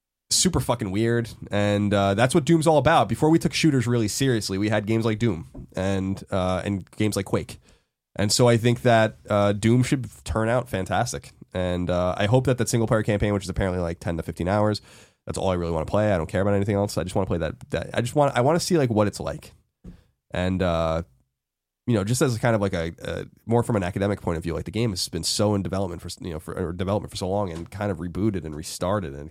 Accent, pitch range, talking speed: American, 90-115 Hz, 260 wpm